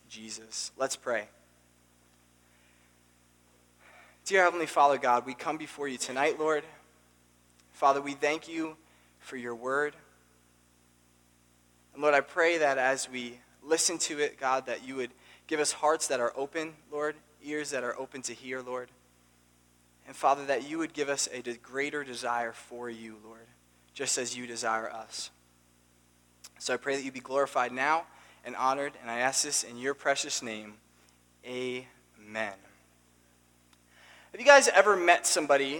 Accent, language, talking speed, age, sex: American, English, 155 wpm, 20-39, male